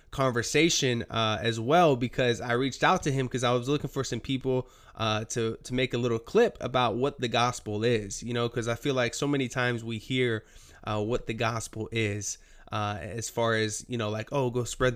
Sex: male